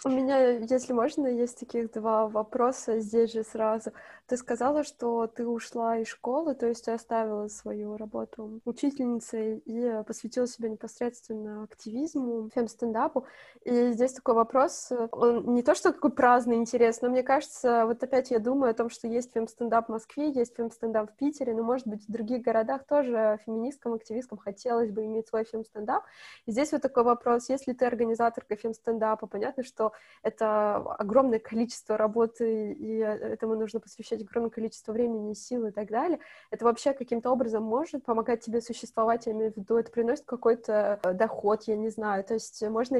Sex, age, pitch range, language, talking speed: female, 20-39, 220-250 Hz, Russian, 170 wpm